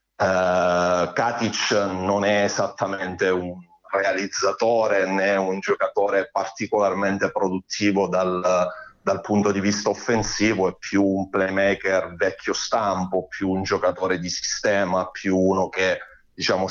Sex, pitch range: male, 90-100 Hz